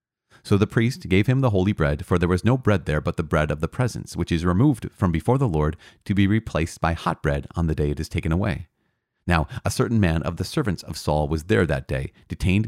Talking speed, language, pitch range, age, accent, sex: 255 wpm, English, 80-115 Hz, 40-59, American, male